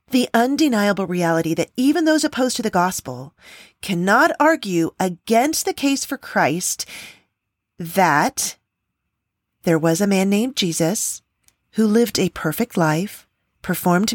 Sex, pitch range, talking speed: female, 165-235 Hz, 125 wpm